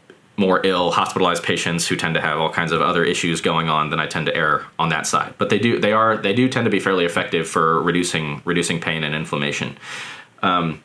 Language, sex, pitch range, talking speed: English, male, 85-100 Hz, 230 wpm